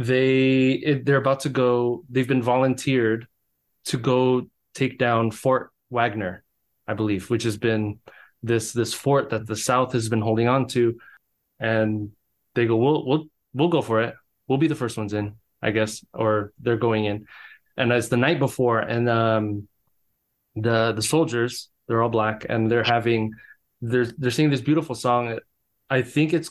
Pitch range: 115-130 Hz